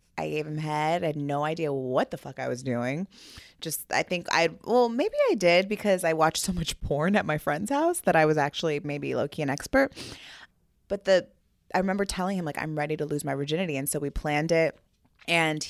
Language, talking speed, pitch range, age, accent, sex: English, 225 wpm, 150-185 Hz, 20-39, American, female